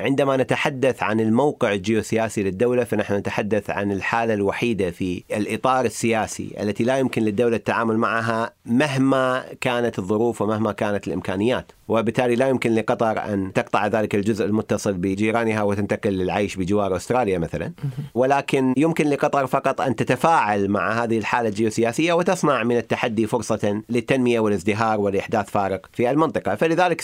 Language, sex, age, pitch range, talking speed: Arabic, male, 40-59, 105-125 Hz, 140 wpm